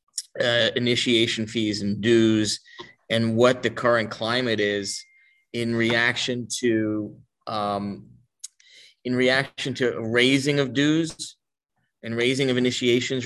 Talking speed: 115 wpm